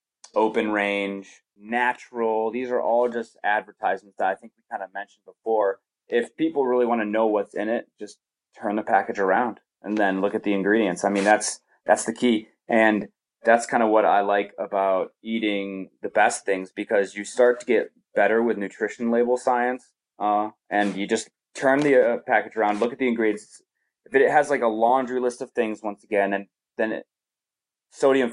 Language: English